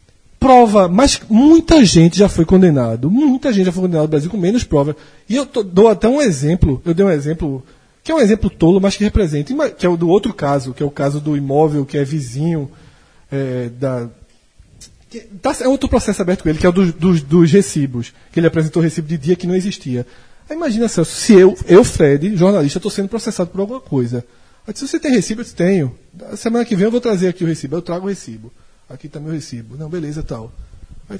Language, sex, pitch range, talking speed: Portuguese, male, 155-235 Hz, 220 wpm